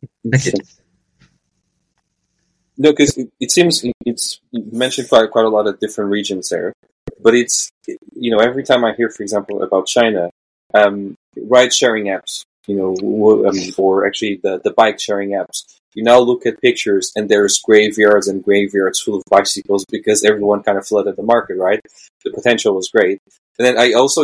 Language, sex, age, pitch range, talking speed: English, male, 20-39, 105-135 Hz, 165 wpm